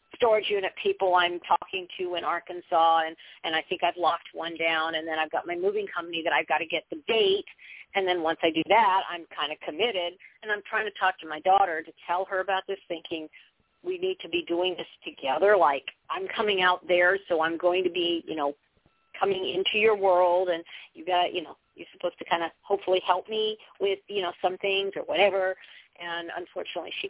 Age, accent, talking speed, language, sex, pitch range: 40-59, American, 220 wpm, English, female, 165-200 Hz